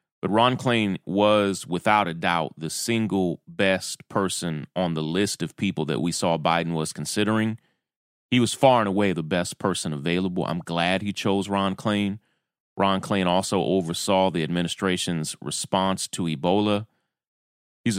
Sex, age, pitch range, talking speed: male, 30-49, 85-105 Hz, 155 wpm